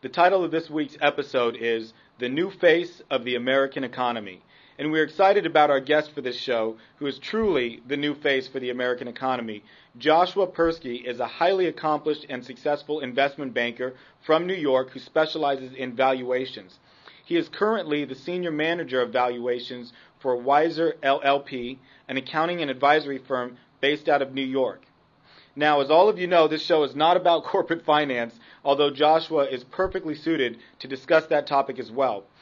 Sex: male